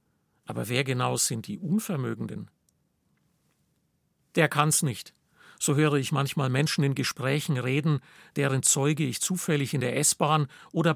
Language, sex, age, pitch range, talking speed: German, male, 50-69, 140-165 Hz, 135 wpm